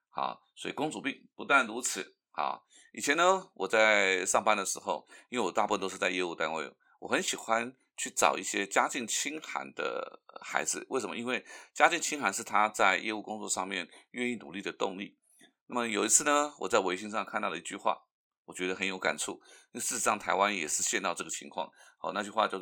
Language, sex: Chinese, male